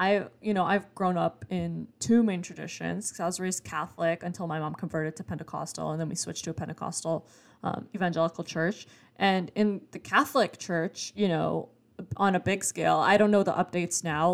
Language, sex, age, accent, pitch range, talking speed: English, female, 10-29, American, 165-190 Hz, 200 wpm